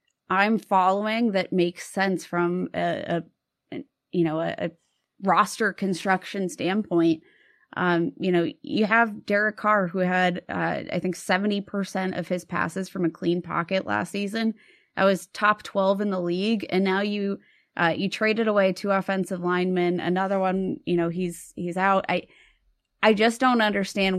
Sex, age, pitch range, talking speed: female, 20-39, 180-205 Hz, 165 wpm